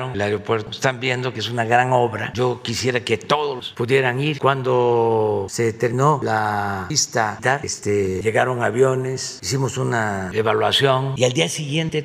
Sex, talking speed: male, 150 wpm